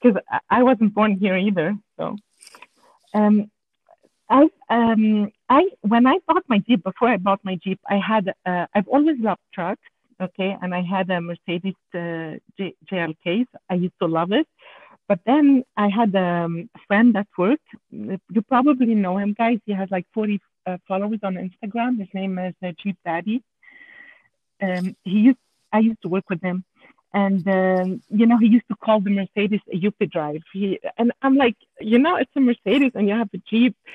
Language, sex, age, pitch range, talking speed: English, female, 50-69, 190-240 Hz, 185 wpm